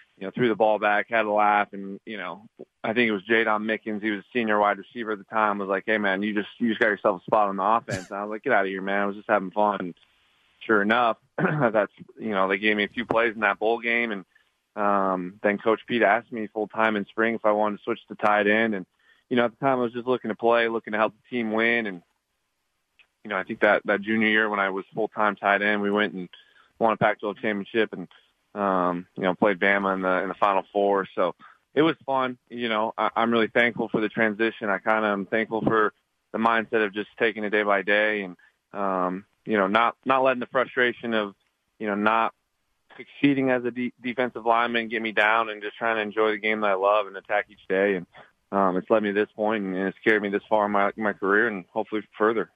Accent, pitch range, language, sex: American, 100-115 Hz, English, male